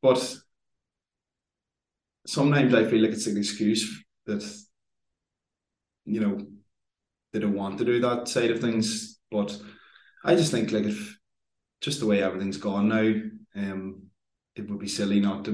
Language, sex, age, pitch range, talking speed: English, male, 20-39, 95-110 Hz, 150 wpm